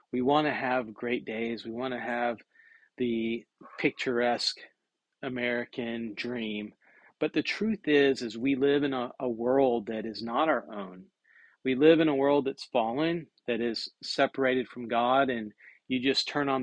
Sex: male